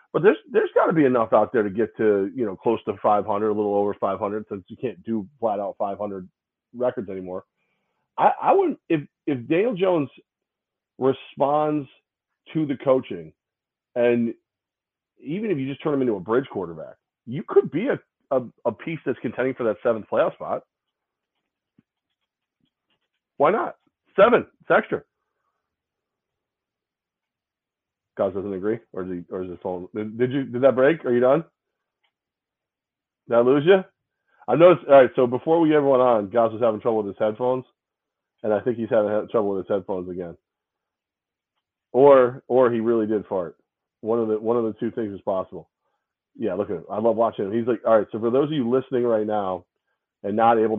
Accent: American